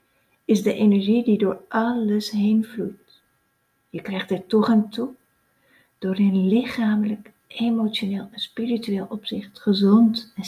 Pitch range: 195-225 Hz